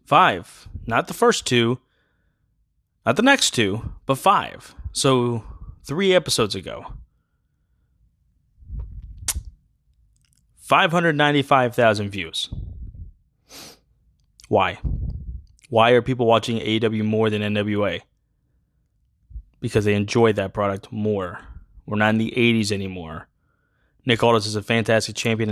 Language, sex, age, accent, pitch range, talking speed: English, male, 20-39, American, 100-125 Hz, 105 wpm